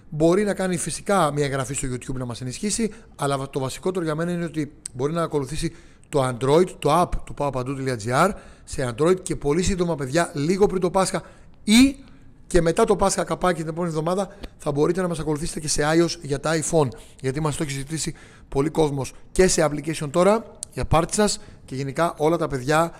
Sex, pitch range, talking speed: male, 140-190 Hz, 205 wpm